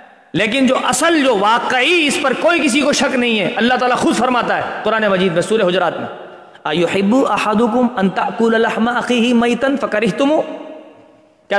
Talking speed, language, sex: 125 wpm, Urdu, male